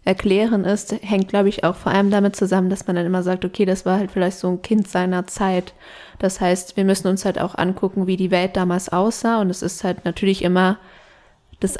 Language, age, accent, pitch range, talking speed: German, 20-39, German, 185-210 Hz, 230 wpm